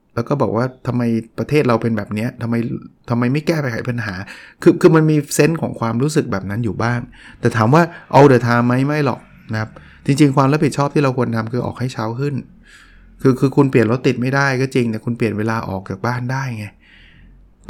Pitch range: 115-140 Hz